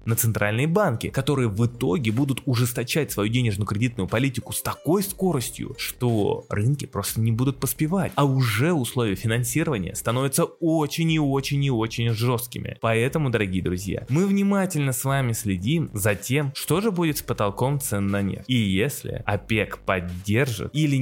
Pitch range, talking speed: 100-140 Hz, 155 wpm